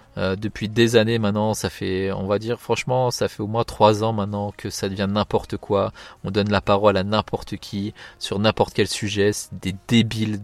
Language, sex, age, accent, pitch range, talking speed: French, male, 20-39, French, 100-115 Hz, 215 wpm